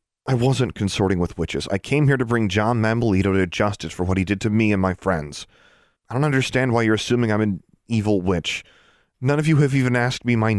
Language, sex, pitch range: English, male, 90-110 Hz